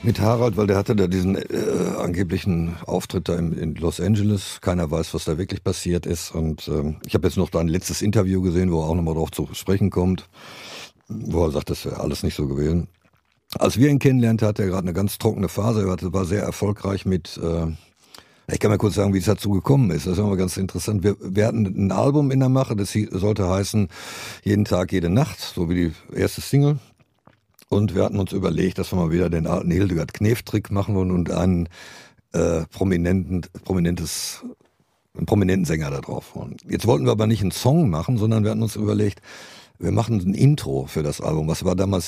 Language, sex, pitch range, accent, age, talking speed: German, male, 85-105 Hz, German, 50-69, 220 wpm